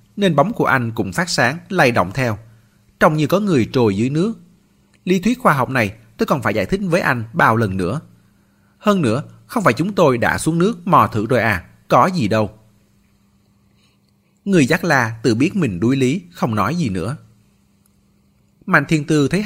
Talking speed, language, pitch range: 195 wpm, Vietnamese, 105-155 Hz